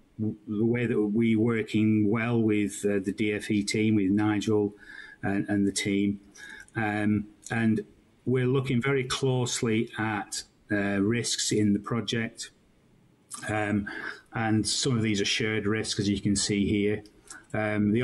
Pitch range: 100-115 Hz